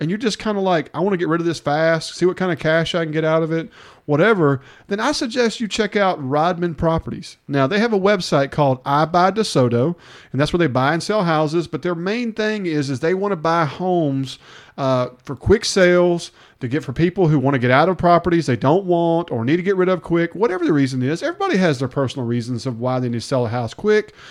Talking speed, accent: 260 wpm, American